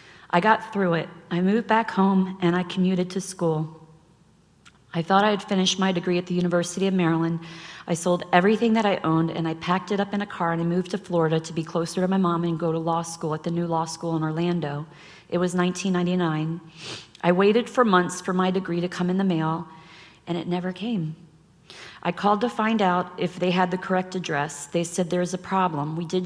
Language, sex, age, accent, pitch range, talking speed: English, female, 40-59, American, 165-195 Hz, 225 wpm